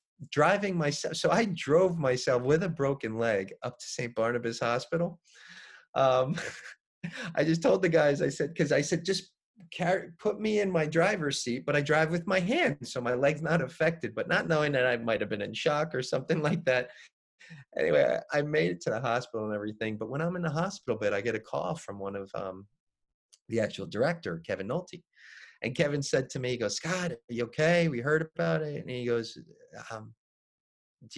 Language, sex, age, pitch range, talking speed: English, male, 30-49, 125-185 Hz, 210 wpm